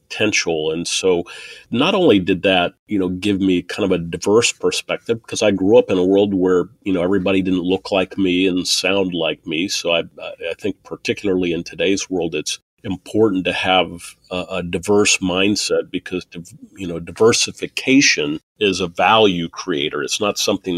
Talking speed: 180 wpm